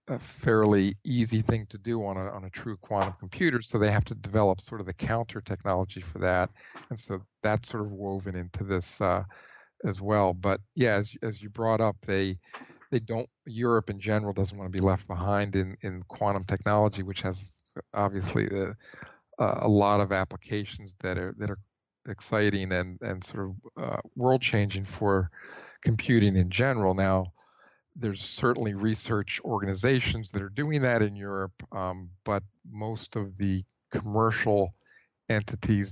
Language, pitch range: English, 95-110 Hz